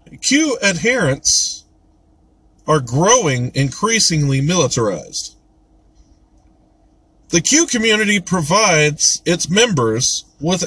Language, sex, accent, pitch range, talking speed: English, male, American, 145-215 Hz, 75 wpm